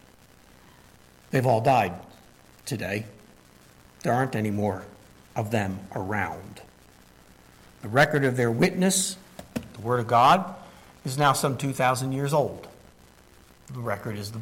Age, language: 60-79, English